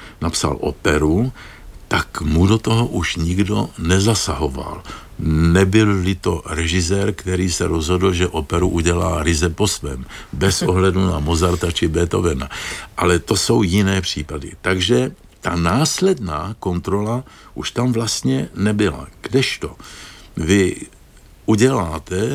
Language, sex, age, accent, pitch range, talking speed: Czech, male, 60-79, native, 85-115 Hz, 115 wpm